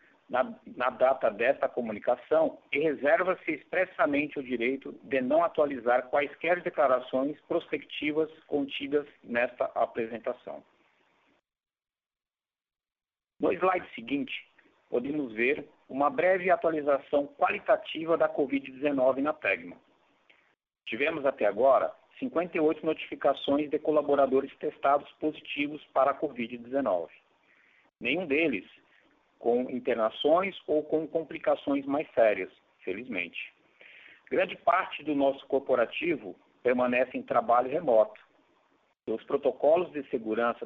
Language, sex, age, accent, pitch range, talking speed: Portuguese, male, 50-69, Brazilian, 125-155 Hz, 100 wpm